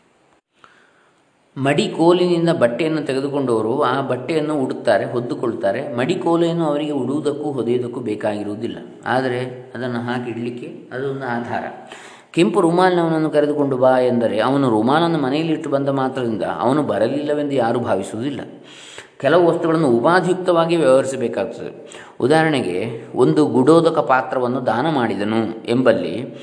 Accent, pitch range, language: native, 120-155 Hz, Kannada